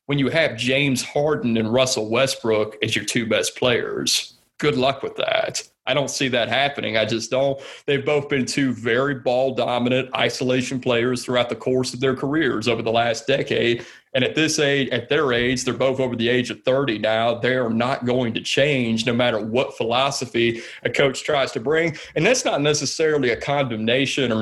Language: English